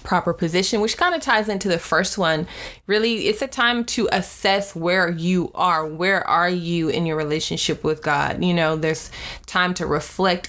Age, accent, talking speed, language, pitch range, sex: 20-39, American, 190 wpm, English, 155-185 Hz, female